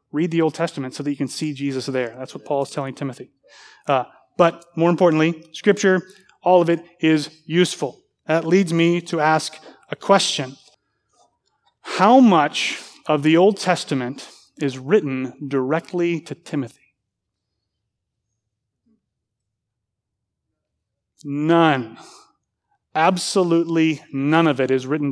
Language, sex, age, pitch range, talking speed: English, male, 30-49, 140-170 Hz, 125 wpm